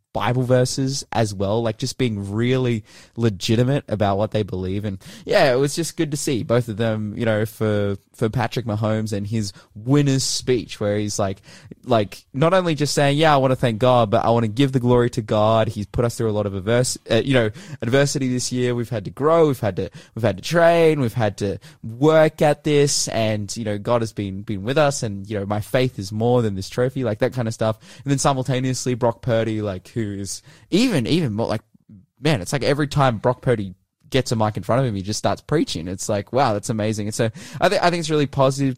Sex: male